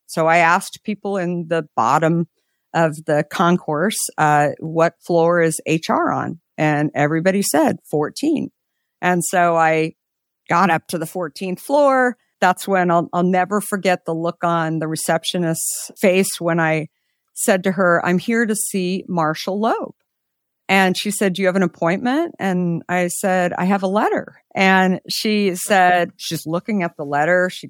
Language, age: English, 50-69